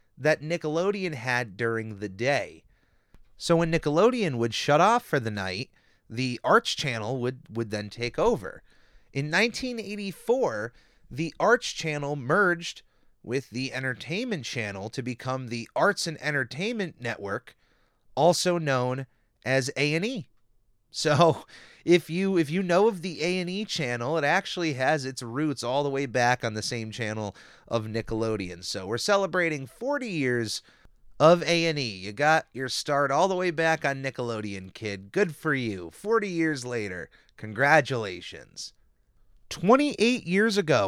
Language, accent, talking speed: English, American, 145 wpm